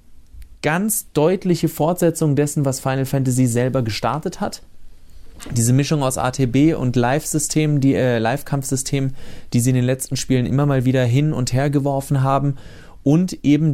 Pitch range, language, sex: 115-145 Hz, German, male